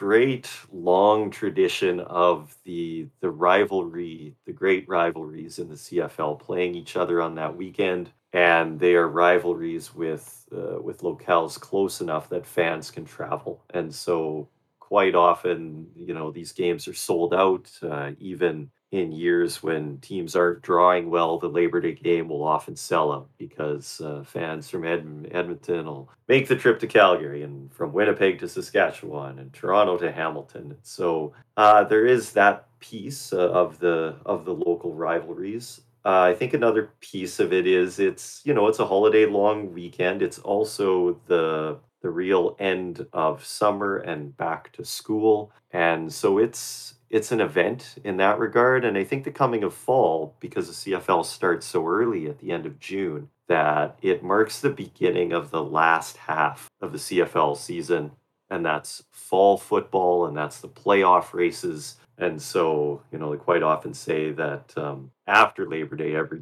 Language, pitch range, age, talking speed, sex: English, 75-100 Hz, 40-59, 170 wpm, male